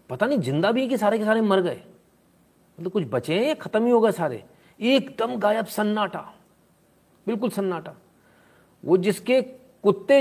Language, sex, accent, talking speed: Hindi, male, native, 170 wpm